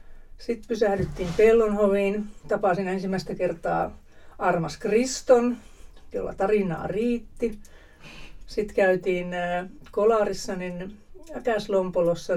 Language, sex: Finnish, female